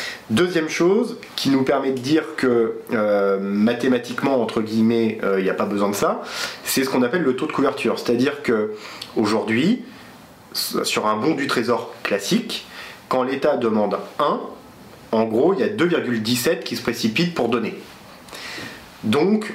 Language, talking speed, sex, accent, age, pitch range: French, 155 wpm, male, French, 30-49, 115-155 Hz